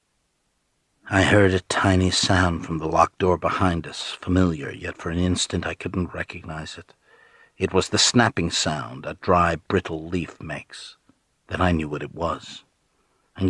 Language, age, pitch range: English, 60-79, 85-95 Hz